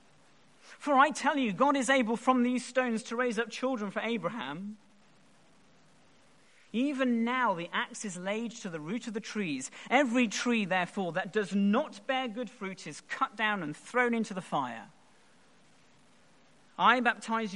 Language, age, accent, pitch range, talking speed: English, 40-59, British, 185-245 Hz, 160 wpm